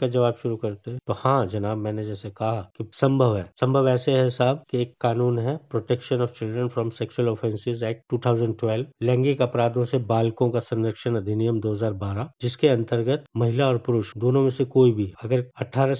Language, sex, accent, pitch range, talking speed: Hindi, male, native, 115-135 Hz, 175 wpm